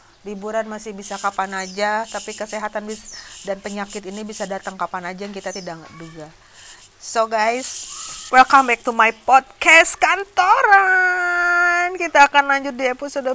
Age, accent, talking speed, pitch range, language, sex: 30-49, native, 145 wpm, 220-280 Hz, Indonesian, female